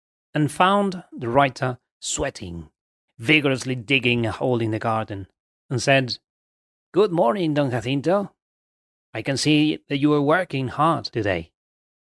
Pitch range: 100-140 Hz